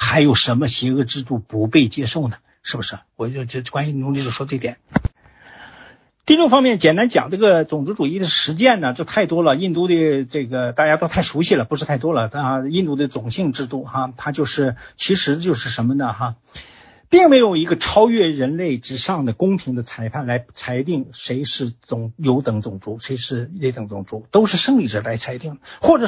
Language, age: Chinese, 50-69